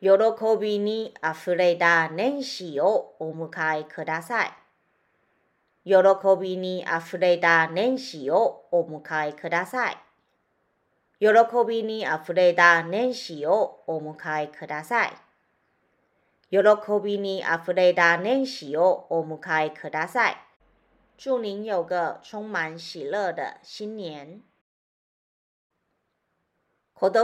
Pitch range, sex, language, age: 170-230 Hz, female, Japanese, 30-49